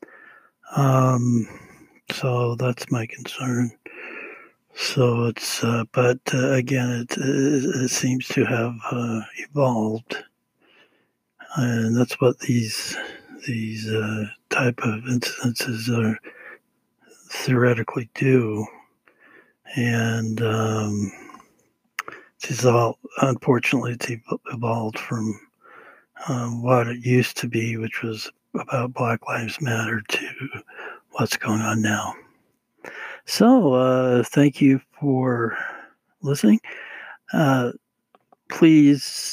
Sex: male